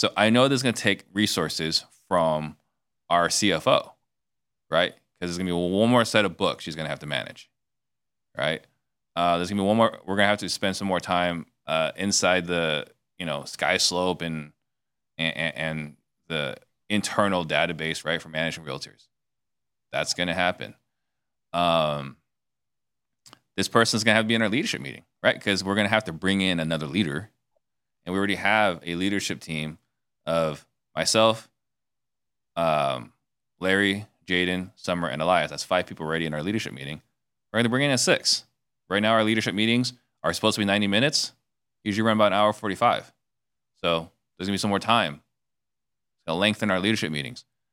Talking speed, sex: 190 wpm, male